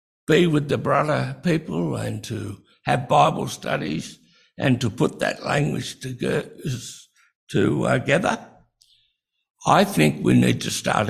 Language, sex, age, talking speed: English, male, 60-79, 125 wpm